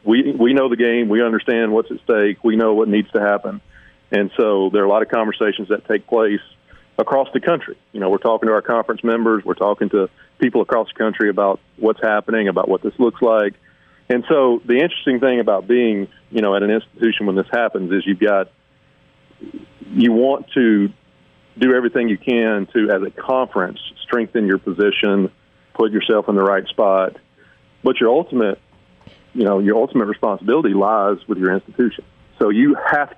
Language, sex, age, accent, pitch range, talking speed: English, male, 40-59, American, 100-120 Hz, 195 wpm